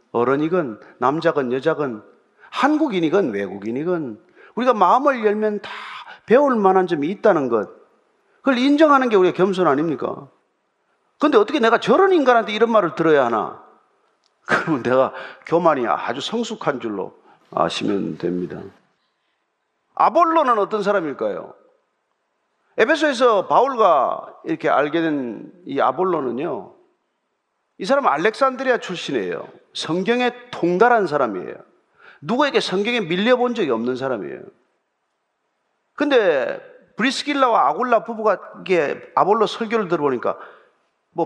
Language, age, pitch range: Korean, 40-59, 190-315 Hz